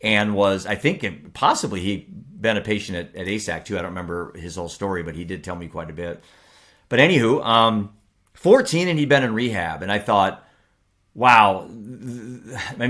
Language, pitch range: English, 95-120 Hz